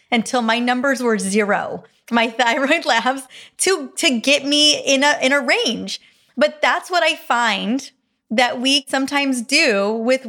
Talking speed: 155 wpm